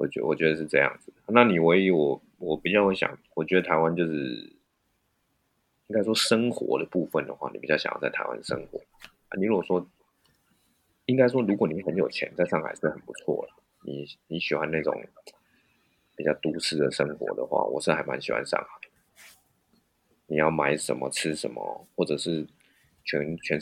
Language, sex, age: Chinese, male, 20-39